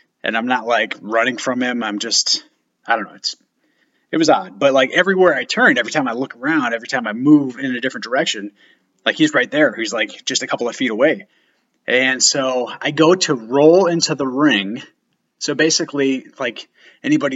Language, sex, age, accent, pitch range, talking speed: English, male, 30-49, American, 120-155 Hz, 205 wpm